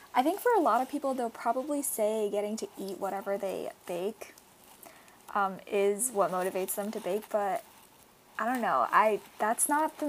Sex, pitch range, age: female, 205-235 Hz, 10-29